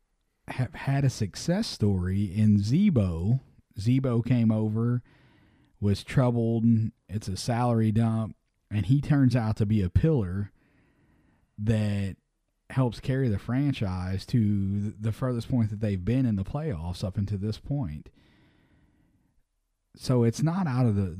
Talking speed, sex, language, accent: 140 wpm, male, English, American